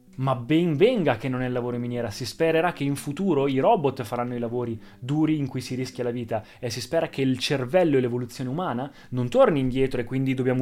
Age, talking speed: 20-39, 235 wpm